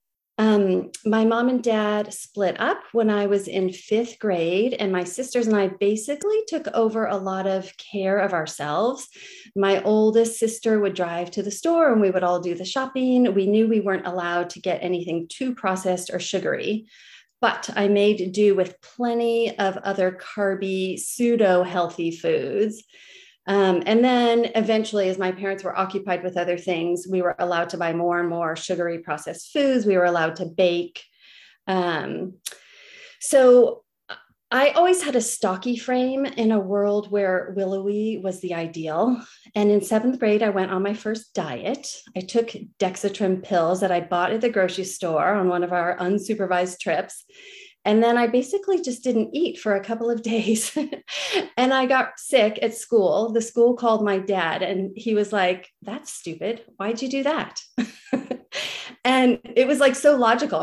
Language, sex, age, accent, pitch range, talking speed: English, female, 30-49, American, 185-240 Hz, 175 wpm